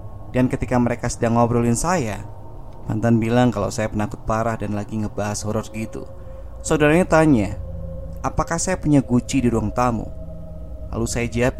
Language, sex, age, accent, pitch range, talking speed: Indonesian, male, 20-39, native, 105-125 Hz, 150 wpm